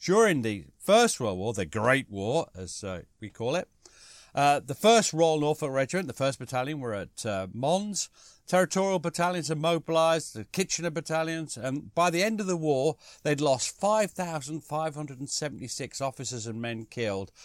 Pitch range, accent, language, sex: 110-165 Hz, British, English, male